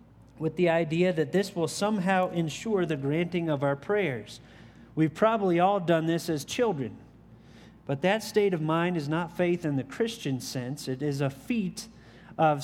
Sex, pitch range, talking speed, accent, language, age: male, 145-190 Hz, 175 wpm, American, English, 30-49